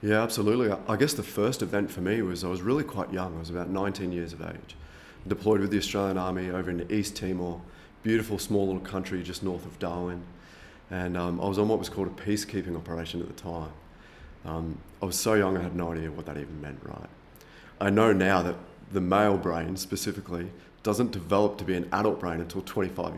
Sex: male